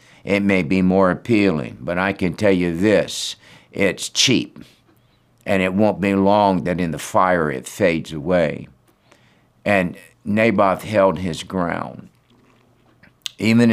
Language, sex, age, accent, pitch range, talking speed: English, male, 60-79, American, 80-100 Hz, 135 wpm